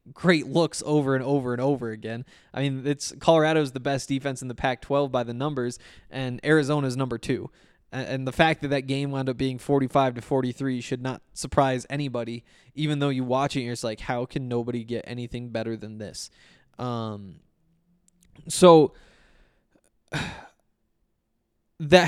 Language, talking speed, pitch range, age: English, 170 wpm, 125-155 Hz, 20-39